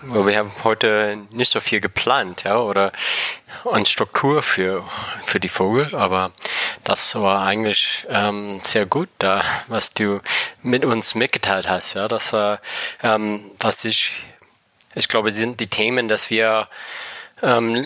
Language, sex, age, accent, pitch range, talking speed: German, male, 20-39, German, 100-110 Hz, 150 wpm